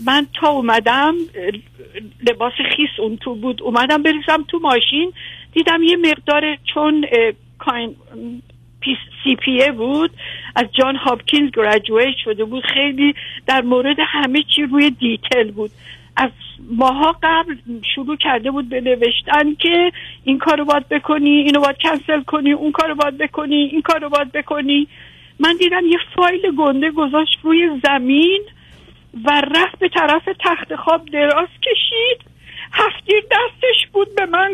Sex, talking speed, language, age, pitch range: female, 140 wpm, Persian, 50-69, 275-365 Hz